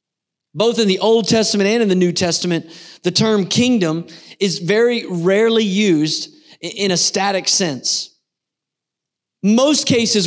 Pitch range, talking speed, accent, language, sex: 195-235 Hz, 135 wpm, American, English, male